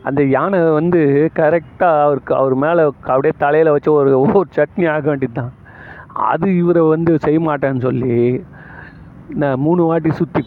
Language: Tamil